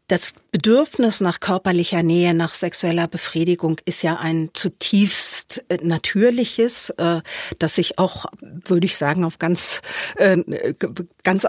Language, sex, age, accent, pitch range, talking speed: German, female, 50-69, German, 165-190 Hz, 115 wpm